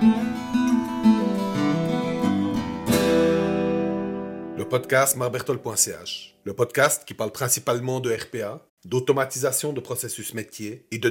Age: 40-59